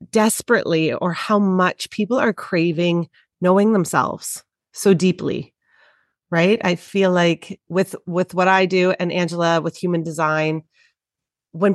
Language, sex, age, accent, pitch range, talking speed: English, female, 30-49, American, 160-195 Hz, 135 wpm